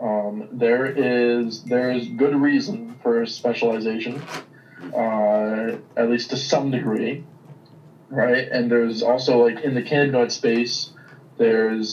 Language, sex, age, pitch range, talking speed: English, male, 20-39, 115-130 Hz, 125 wpm